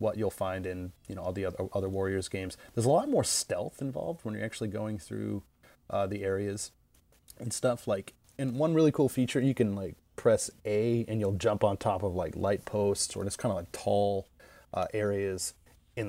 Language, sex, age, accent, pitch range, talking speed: English, male, 30-49, American, 95-120 Hz, 215 wpm